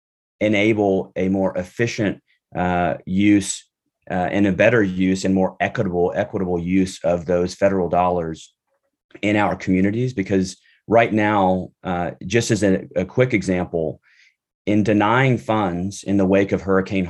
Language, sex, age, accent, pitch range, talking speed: English, male, 30-49, American, 90-100 Hz, 145 wpm